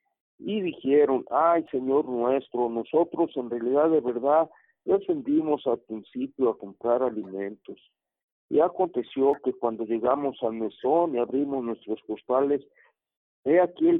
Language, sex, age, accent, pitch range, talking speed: Spanish, male, 50-69, Mexican, 125-175 Hz, 130 wpm